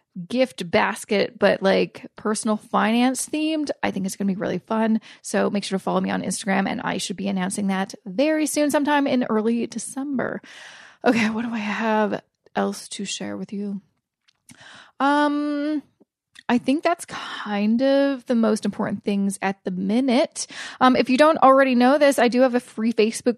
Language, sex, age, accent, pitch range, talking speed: English, female, 20-39, American, 205-270 Hz, 180 wpm